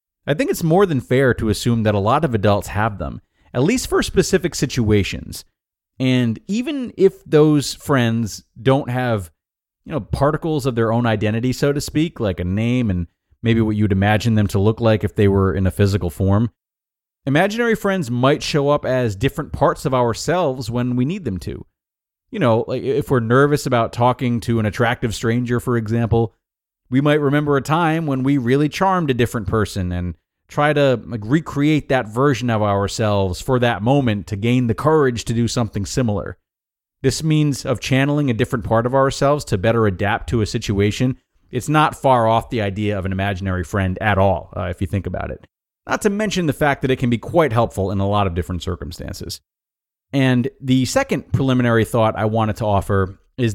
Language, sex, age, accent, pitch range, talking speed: English, male, 30-49, American, 100-135 Hz, 195 wpm